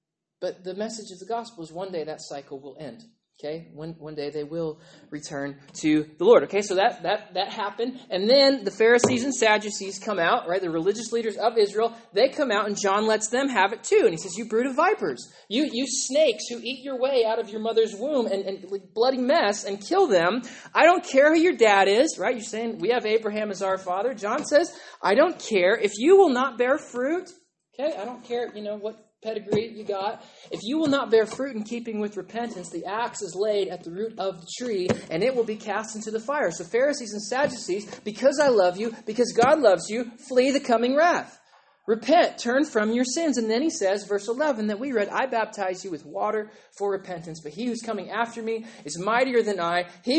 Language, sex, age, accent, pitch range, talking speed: English, male, 20-39, American, 195-250 Hz, 230 wpm